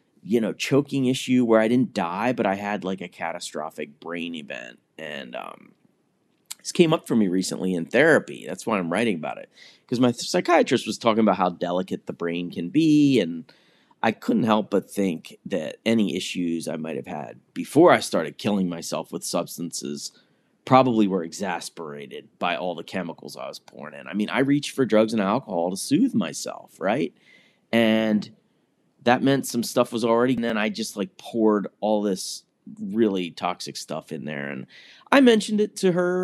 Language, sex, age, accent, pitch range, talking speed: English, male, 30-49, American, 95-135 Hz, 185 wpm